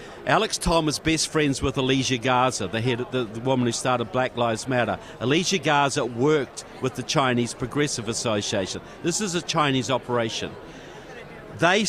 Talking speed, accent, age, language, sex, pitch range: 155 wpm, Australian, 50-69, English, male, 130-165 Hz